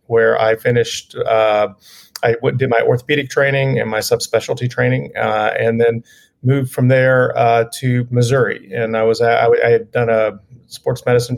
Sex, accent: male, American